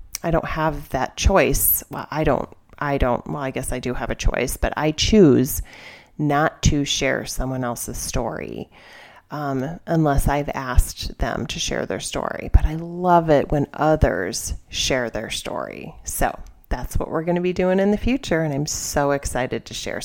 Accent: American